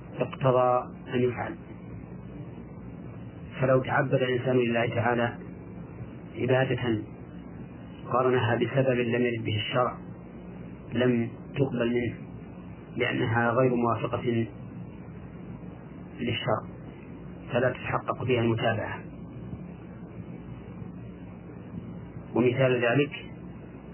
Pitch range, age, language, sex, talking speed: 105-125 Hz, 30-49, Arabic, male, 70 wpm